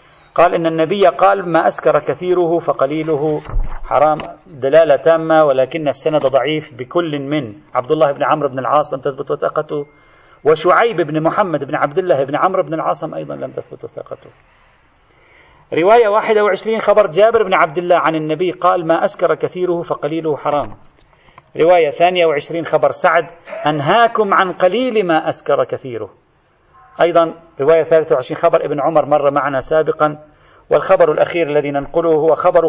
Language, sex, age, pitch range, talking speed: Arabic, male, 40-59, 150-180 Hz, 145 wpm